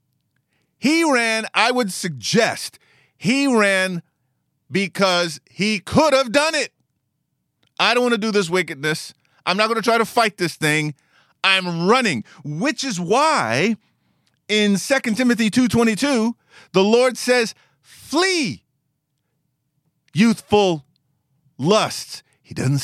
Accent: American